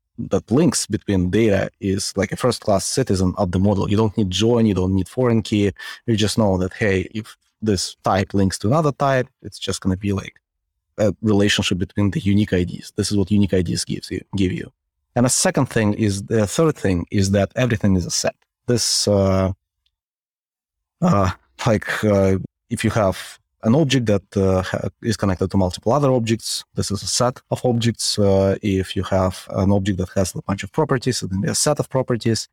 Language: English